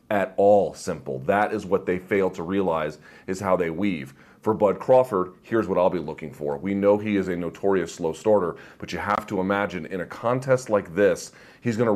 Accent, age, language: American, 30-49, English